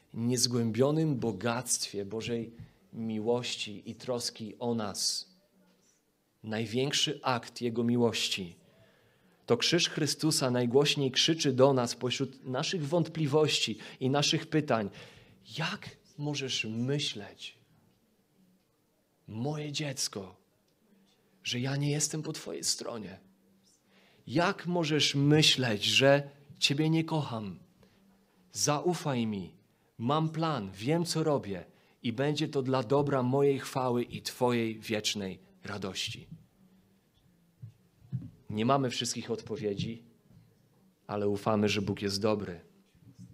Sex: male